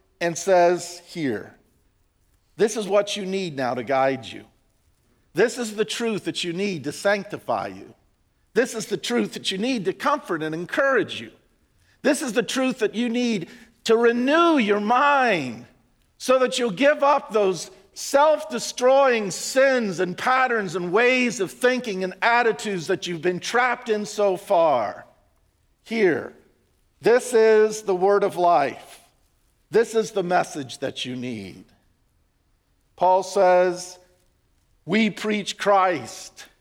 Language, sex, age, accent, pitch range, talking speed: English, male, 50-69, American, 175-235 Hz, 145 wpm